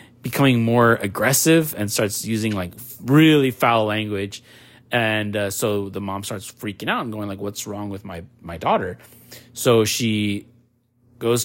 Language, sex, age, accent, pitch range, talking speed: English, male, 30-49, American, 100-120 Hz, 155 wpm